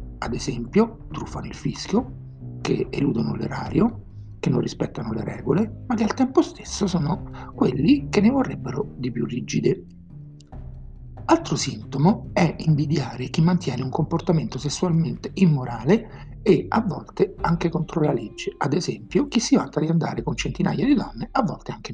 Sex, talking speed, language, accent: male, 155 wpm, Italian, native